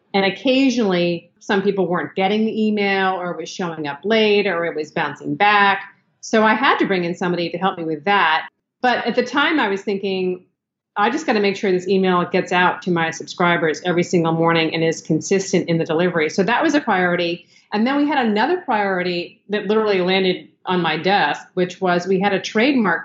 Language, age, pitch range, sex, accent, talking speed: English, 40-59, 175-215 Hz, female, American, 215 wpm